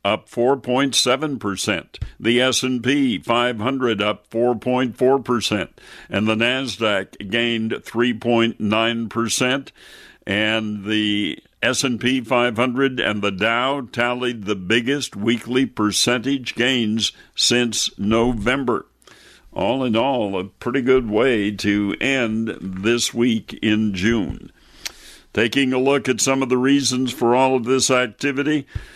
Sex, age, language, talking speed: male, 60-79, English, 115 wpm